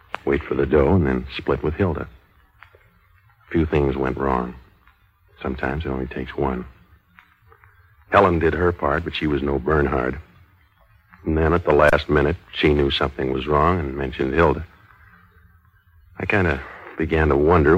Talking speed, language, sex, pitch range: 160 wpm, English, male, 70-95 Hz